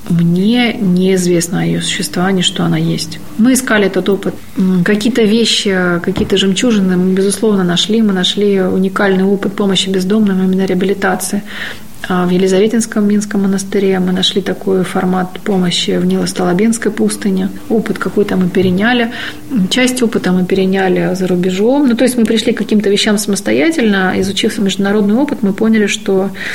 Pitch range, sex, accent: 185-225 Hz, female, native